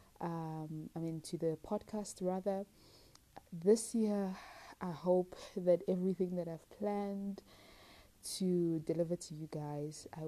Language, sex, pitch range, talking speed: English, female, 155-185 Hz, 130 wpm